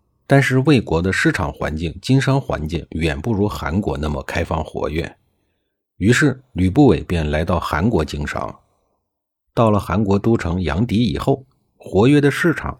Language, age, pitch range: Chinese, 50-69, 80-120 Hz